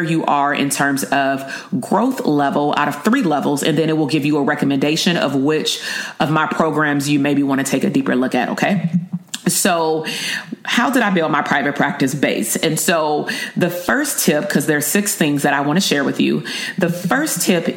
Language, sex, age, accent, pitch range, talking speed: English, female, 40-59, American, 150-195 Hz, 215 wpm